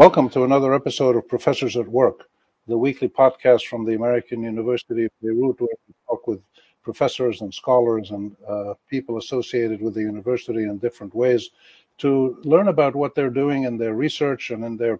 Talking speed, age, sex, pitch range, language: 185 wpm, 50-69, male, 120-140 Hz, English